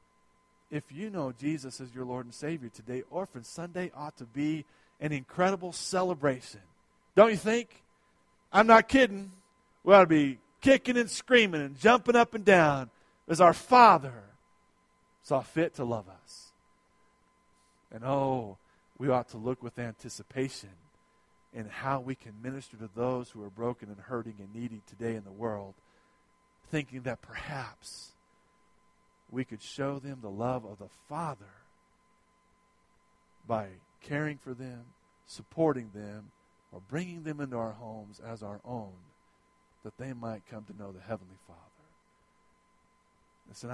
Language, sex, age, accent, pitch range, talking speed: English, male, 40-59, American, 100-140 Hz, 145 wpm